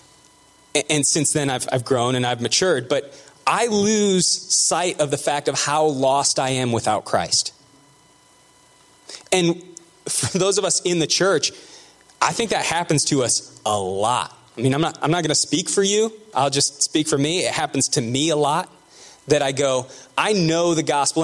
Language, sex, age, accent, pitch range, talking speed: English, male, 20-39, American, 140-185 Hz, 190 wpm